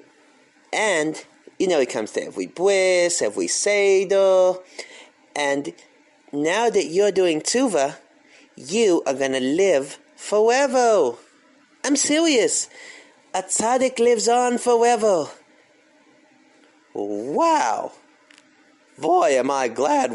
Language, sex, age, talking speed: English, male, 30-49, 100 wpm